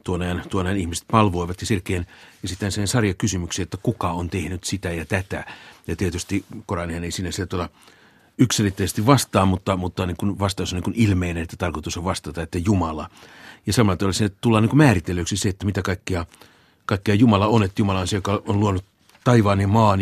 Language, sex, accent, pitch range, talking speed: Finnish, male, native, 90-105 Hz, 190 wpm